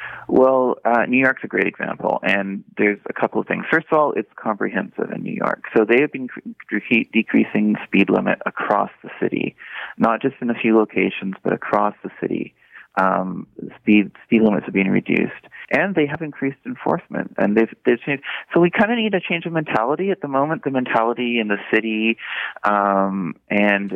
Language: English